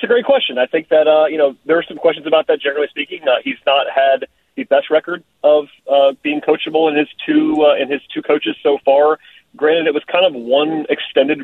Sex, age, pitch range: male, 30-49, 130-165 Hz